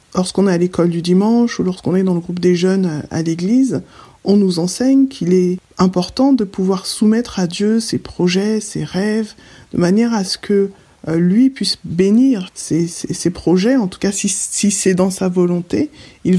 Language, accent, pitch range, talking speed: French, French, 175-210 Hz, 195 wpm